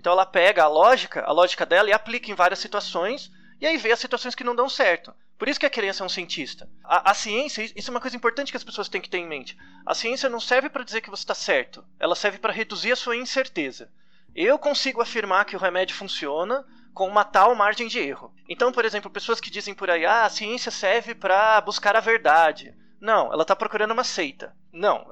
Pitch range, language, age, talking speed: 185-245 Hz, Portuguese, 20-39, 235 wpm